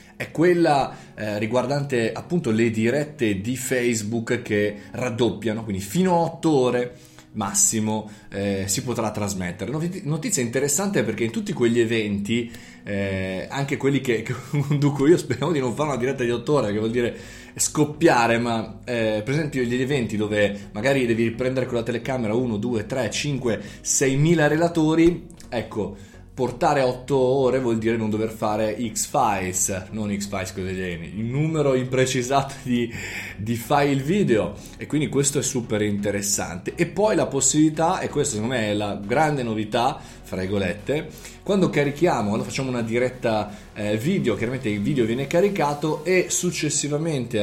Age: 20-39